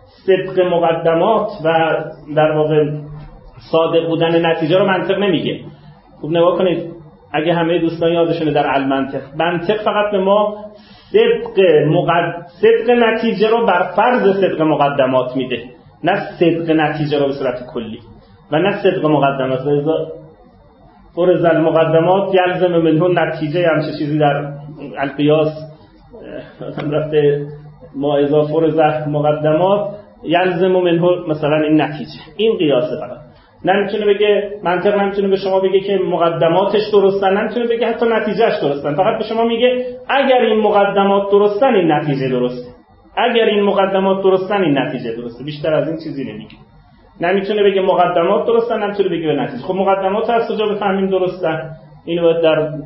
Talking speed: 140 wpm